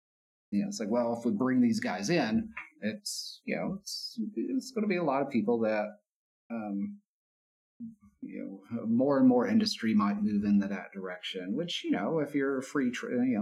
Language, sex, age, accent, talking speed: English, male, 40-59, American, 195 wpm